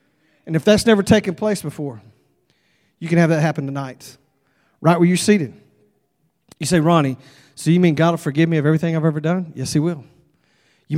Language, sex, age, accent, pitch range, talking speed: English, male, 40-59, American, 145-195 Hz, 195 wpm